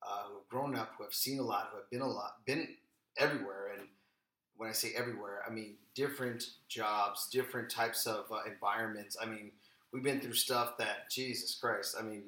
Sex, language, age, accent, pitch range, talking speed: male, English, 30-49, American, 105-130 Hz, 205 wpm